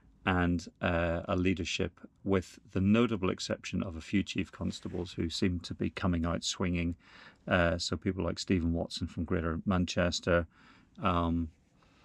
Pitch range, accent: 85-95 Hz, British